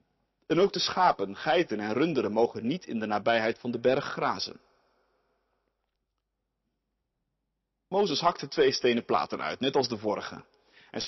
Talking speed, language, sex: 145 wpm, Dutch, male